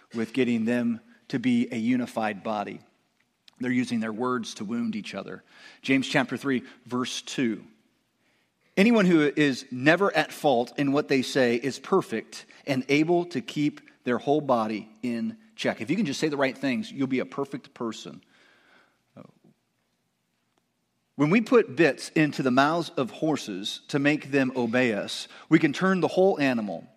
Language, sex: English, male